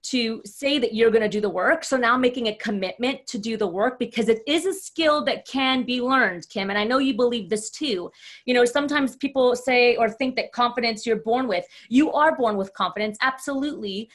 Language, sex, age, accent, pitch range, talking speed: English, female, 30-49, American, 215-270 Hz, 225 wpm